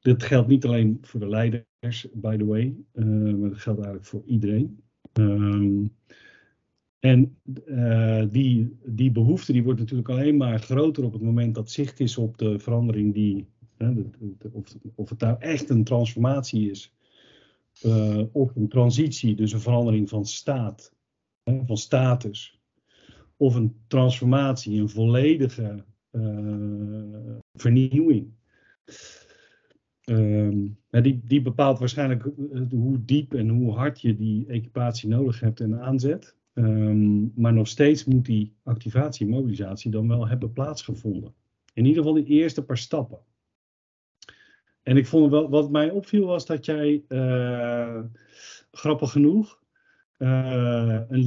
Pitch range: 110-135 Hz